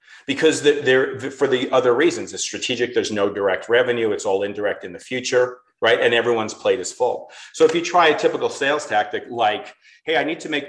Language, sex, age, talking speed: English, male, 40-59, 210 wpm